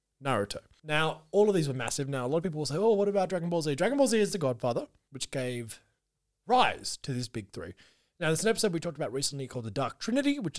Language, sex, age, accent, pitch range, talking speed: English, male, 30-49, Australian, 120-185 Hz, 260 wpm